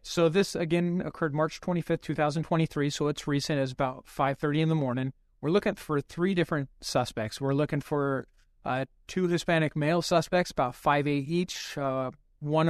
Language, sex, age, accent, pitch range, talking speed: English, male, 30-49, American, 135-155 Hz, 165 wpm